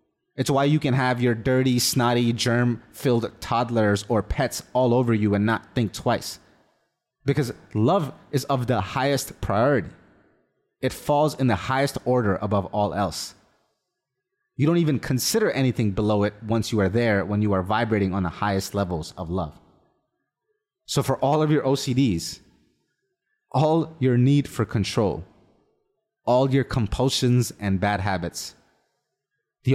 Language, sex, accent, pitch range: English, male, American, 95-135 Hz